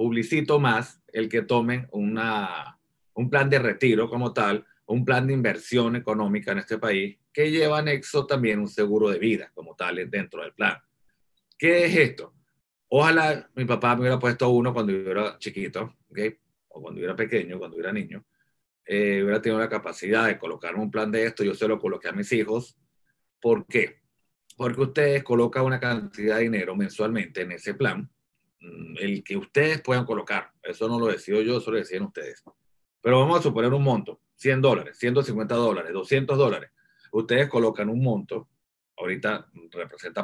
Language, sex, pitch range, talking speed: English, male, 110-135 Hz, 180 wpm